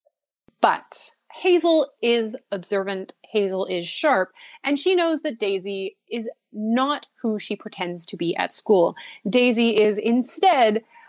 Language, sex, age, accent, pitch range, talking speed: English, female, 30-49, American, 200-295 Hz, 130 wpm